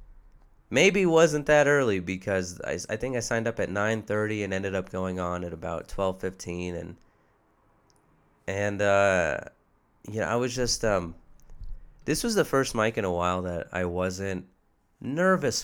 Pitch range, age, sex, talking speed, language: 90-110 Hz, 20-39, male, 170 wpm, English